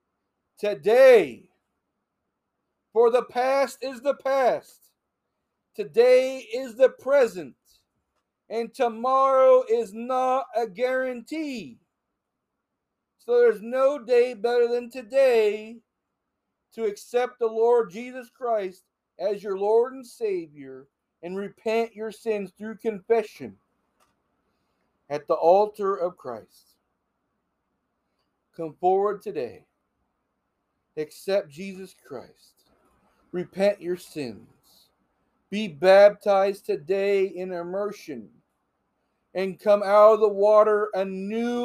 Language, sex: English, male